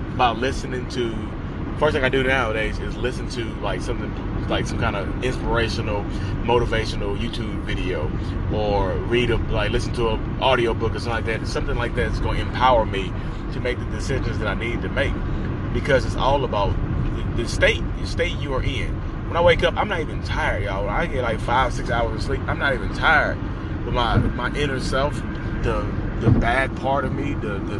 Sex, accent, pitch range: male, American, 100-120 Hz